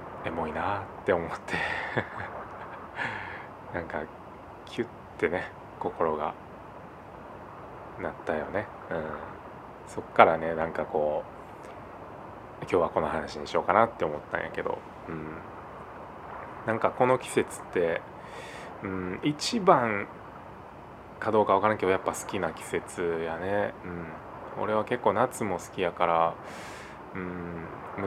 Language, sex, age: Japanese, male, 20-39